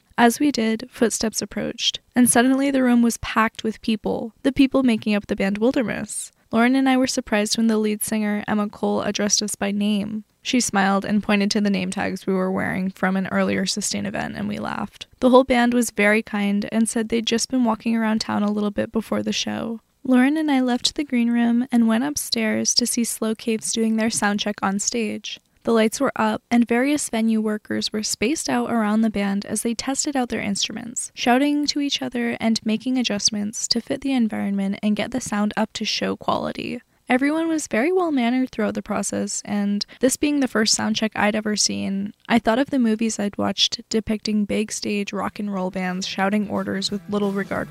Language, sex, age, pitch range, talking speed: English, female, 10-29, 205-240 Hz, 210 wpm